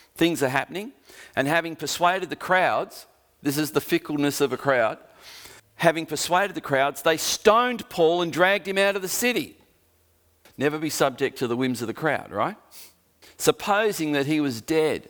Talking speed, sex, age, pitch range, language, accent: 175 wpm, male, 40-59, 130-175 Hz, English, Australian